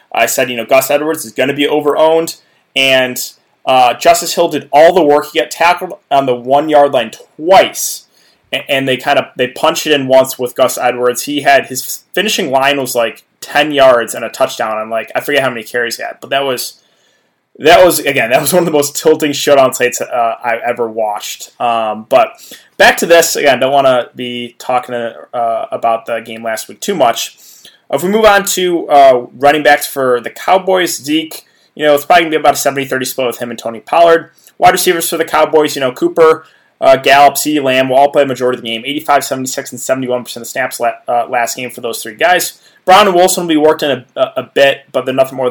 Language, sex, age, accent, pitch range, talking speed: English, male, 20-39, American, 125-160 Hz, 230 wpm